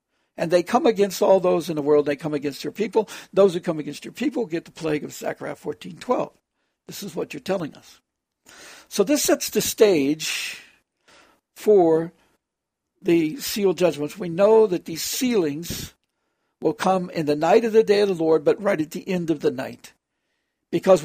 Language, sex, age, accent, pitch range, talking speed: English, male, 60-79, American, 165-215 Hz, 190 wpm